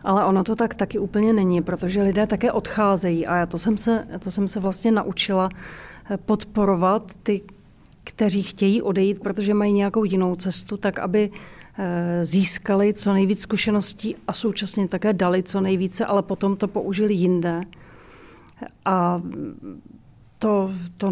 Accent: native